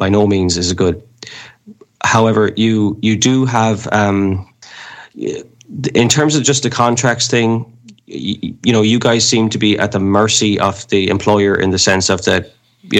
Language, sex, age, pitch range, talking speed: English, male, 20-39, 100-120 Hz, 180 wpm